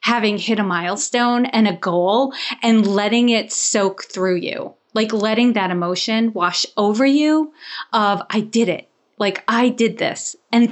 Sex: female